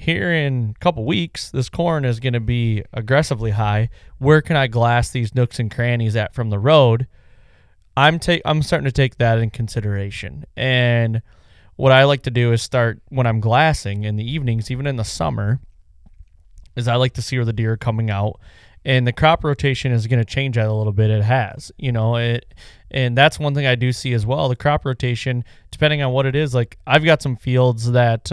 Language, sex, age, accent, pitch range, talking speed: English, male, 20-39, American, 110-135 Hz, 220 wpm